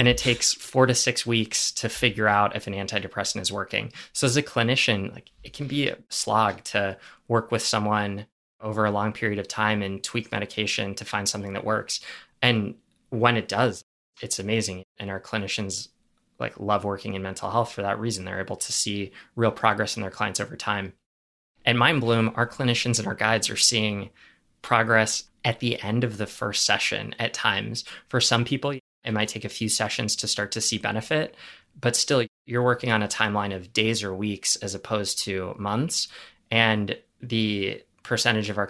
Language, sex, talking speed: English, male, 195 wpm